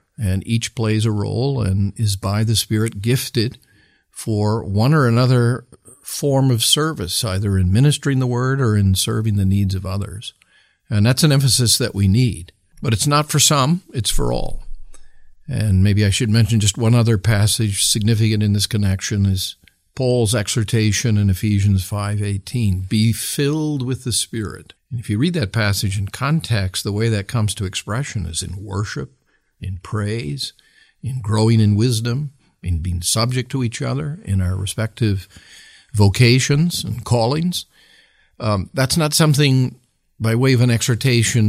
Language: English